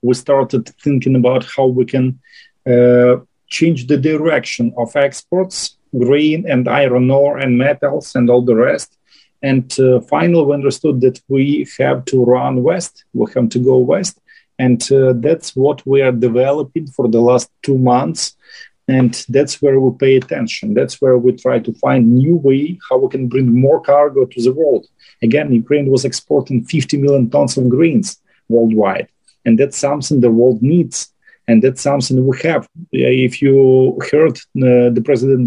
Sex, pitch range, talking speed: male, 125-145 Hz, 170 wpm